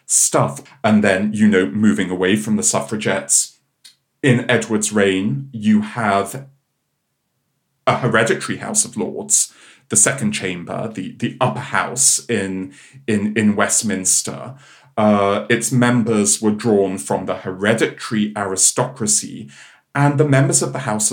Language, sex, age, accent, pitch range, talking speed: English, male, 40-59, British, 100-135 Hz, 130 wpm